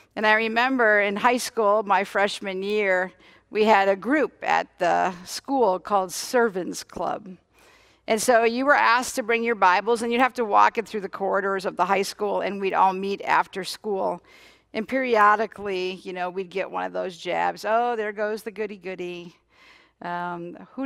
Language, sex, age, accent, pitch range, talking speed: English, female, 50-69, American, 190-250 Hz, 180 wpm